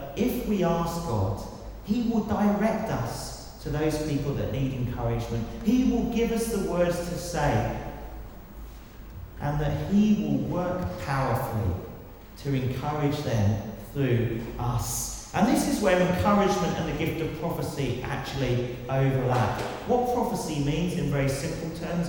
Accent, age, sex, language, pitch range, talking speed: British, 40-59, male, English, 125-180 Hz, 140 wpm